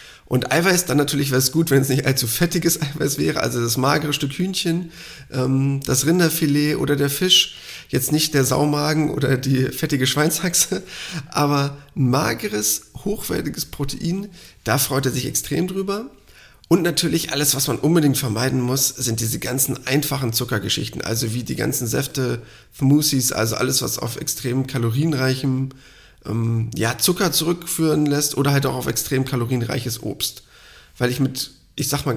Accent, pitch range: German, 125-150 Hz